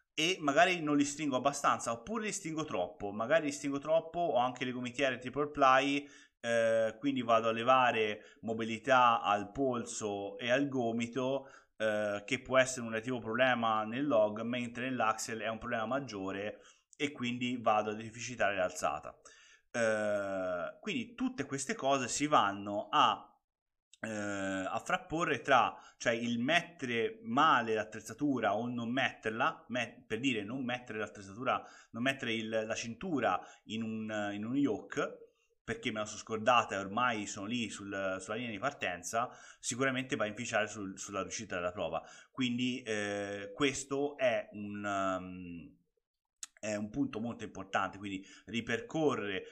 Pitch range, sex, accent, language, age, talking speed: 110-140 Hz, male, native, Italian, 20-39, 155 wpm